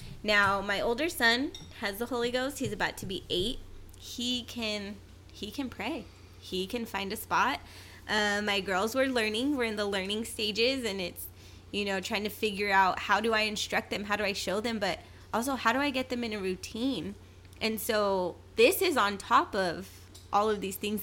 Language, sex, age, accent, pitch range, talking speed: English, female, 20-39, American, 175-215 Hz, 205 wpm